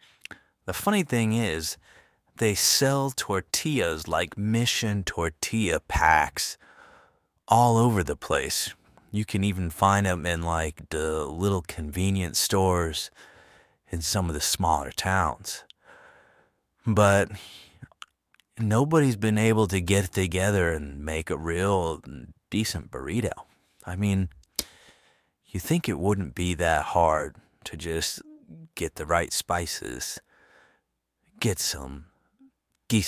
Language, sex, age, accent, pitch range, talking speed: English, male, 30-49, American, 85-110 Hz, 115 wpm